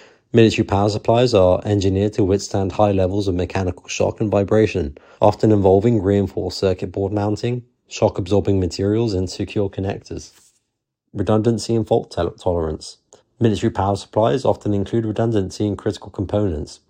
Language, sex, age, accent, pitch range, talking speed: English, male, 30-49, British, 95-110 Hz, 140 wpm